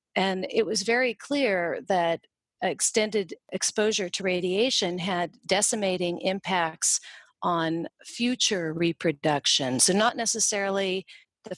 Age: 40-59